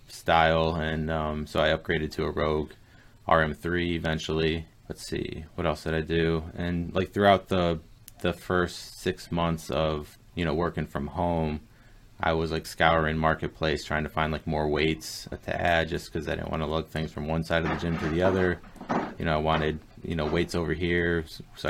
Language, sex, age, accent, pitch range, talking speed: English, male, 20-39, American, 80-90 Hz, 200 wpm